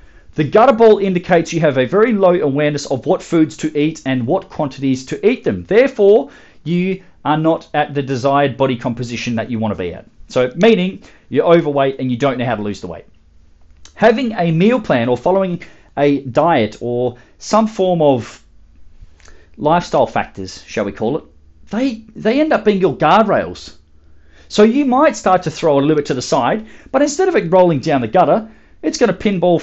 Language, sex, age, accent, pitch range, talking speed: English, male, 40-59, Australian, 130-210 Hz, 195 wpm